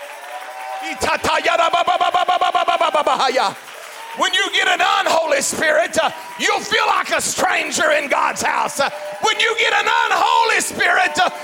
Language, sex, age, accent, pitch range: English, male, 40-59, American, 270-355 Hz